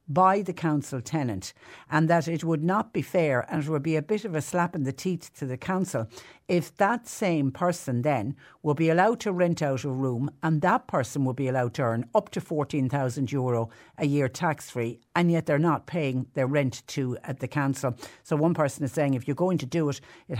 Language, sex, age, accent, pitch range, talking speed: English, female, 60-79, Irish, 125-160 Hz, 225 wpm